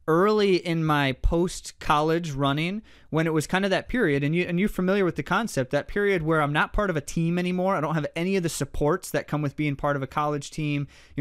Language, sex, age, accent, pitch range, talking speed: English, male, 20-39, American, 135-165 Hz, 250 wpm